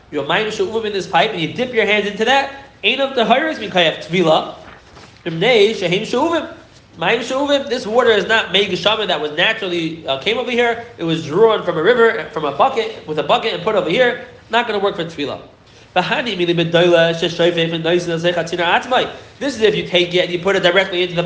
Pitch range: 175-245 Hz